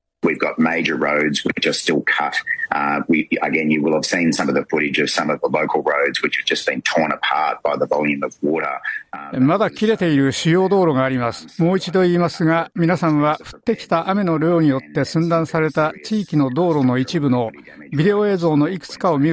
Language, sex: Japanese, male